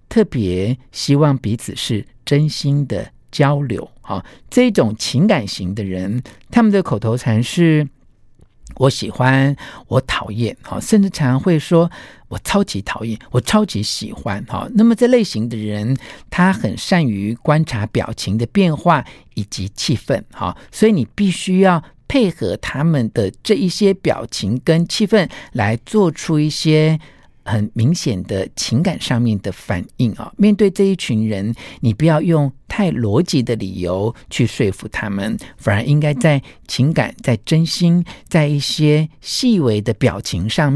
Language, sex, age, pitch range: Chinese, male, 50-69, 110-170 Hz